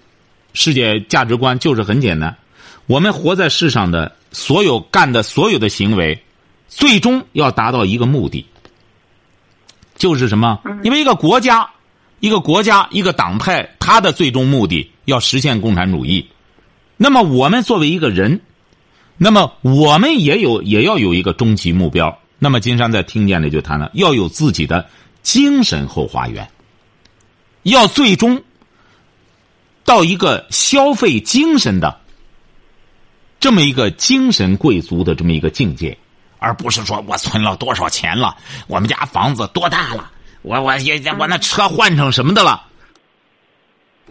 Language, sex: Chinese, male